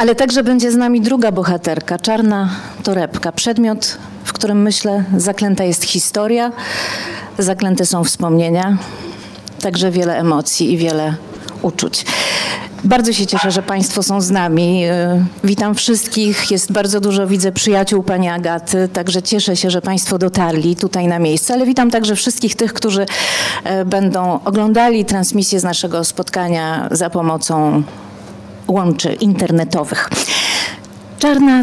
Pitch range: 170-215 Hz